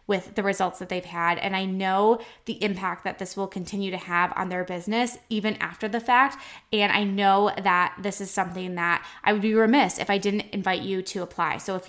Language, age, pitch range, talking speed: English, 20-39, 185-215 Hz, 225 wpm